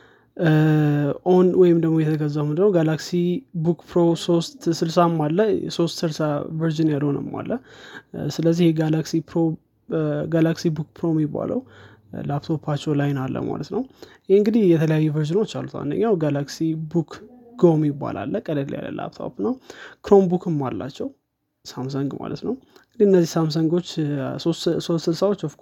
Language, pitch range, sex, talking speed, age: Amharic, 150-180 Hz, male, 90 wpm, 20-39